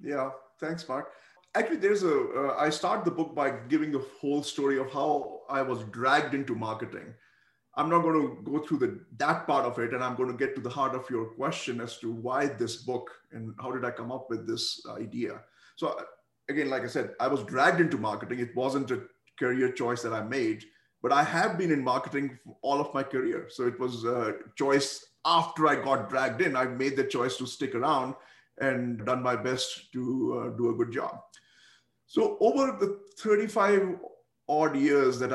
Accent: Indian